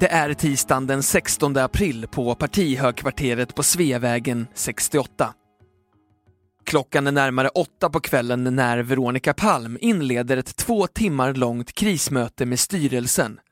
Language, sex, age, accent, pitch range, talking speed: Swedish, male, 20-39, native, 125-155 Hz, 125 wpm